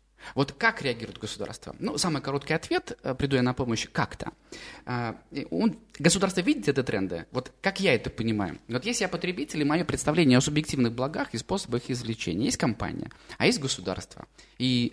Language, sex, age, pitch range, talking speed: Russian, male, 20-39, 115-155 Hz, 165 wpm